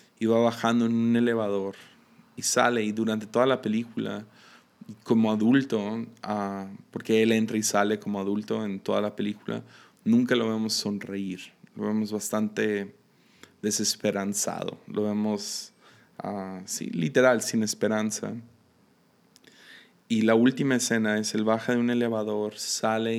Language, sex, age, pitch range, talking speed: Spanish, male, 20-39, 100-115 Hz, 135 wpm